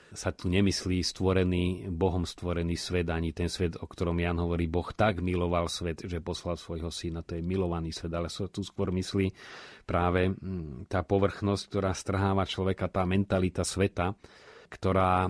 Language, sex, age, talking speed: Slovak, male, 30-49, 160 wpm